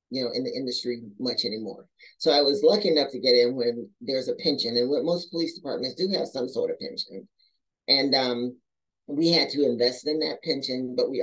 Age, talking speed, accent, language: 40-59, 220 wpm, American, English